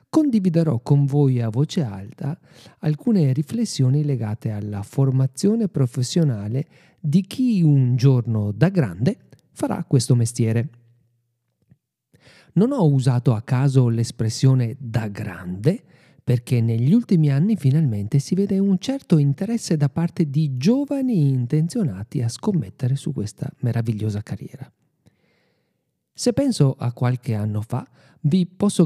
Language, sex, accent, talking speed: Italian, male, native, 120 wpm